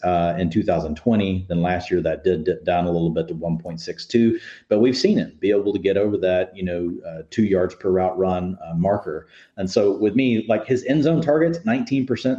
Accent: American